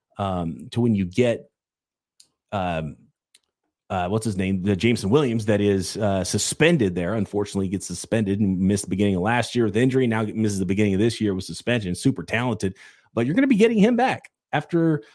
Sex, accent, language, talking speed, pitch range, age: male, American, English, 200 wpm, 100-125 Hz, 30-49